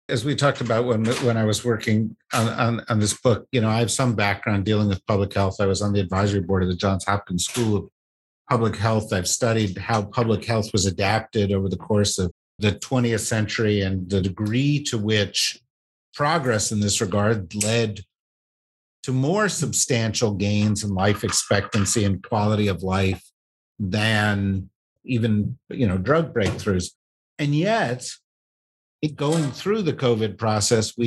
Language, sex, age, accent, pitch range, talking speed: English, male, 50-69, American, 100-125 Hz, 170 wpm